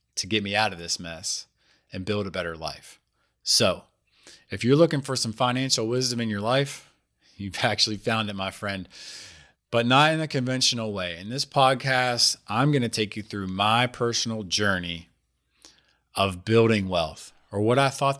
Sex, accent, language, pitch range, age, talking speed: male, American, English, 95-125 Hz, 30-49, 180 wpm